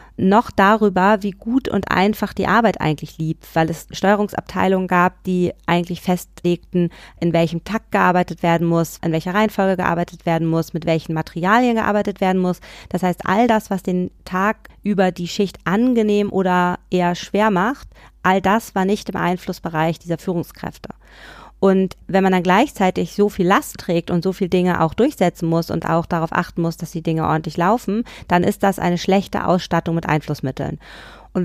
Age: 30-49